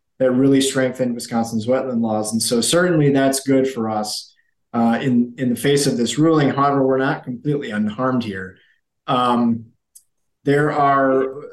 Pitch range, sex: 120-140 Hz, male